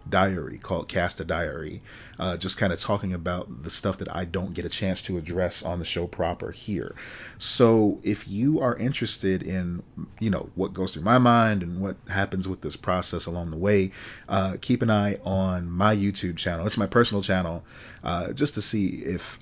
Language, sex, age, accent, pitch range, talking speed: English, male, 40-59, American, 90-110 Hz, 200 wpm